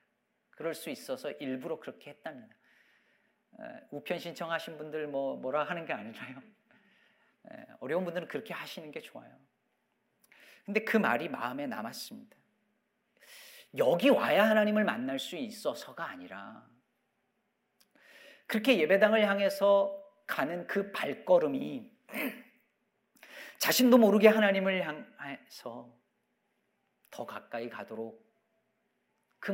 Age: 40-59